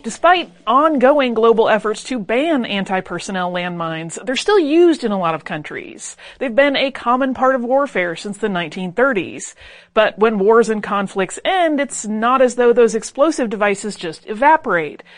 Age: 30-49